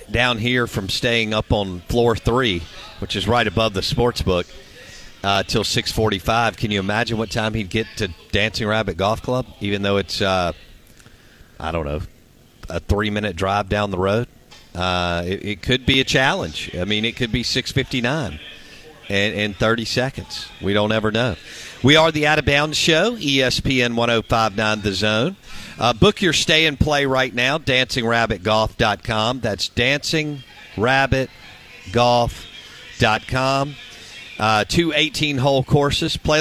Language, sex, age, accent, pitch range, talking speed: English, male, 50-69, American, 105-130 Hz, 155 wpm